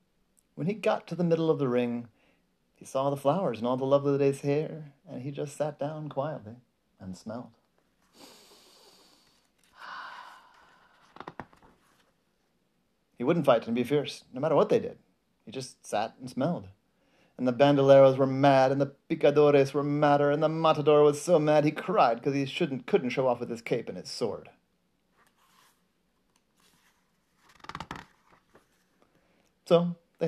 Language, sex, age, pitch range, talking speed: English, male, 40-59, 125-150 Hz, 150 wpm